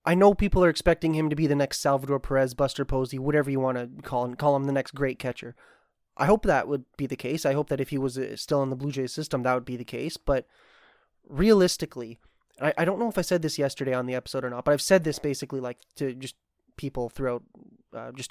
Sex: male